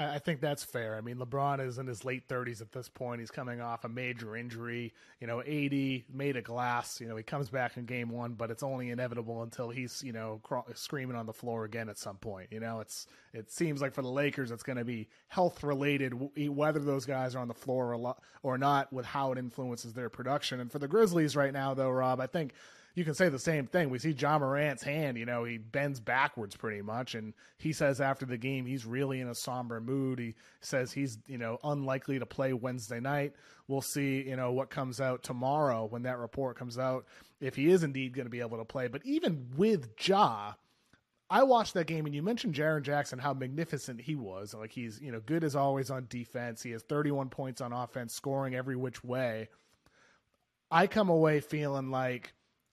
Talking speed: 225 wpm